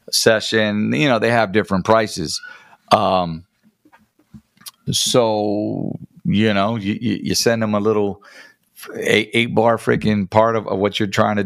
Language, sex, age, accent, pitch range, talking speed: English, male, 40-59, American, 90-120 Hz, 150 wpm